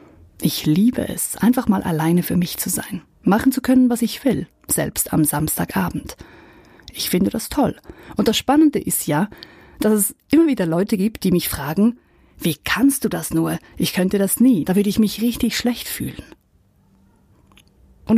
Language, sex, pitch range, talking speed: German, female, 175-225 Hz, 180 wpm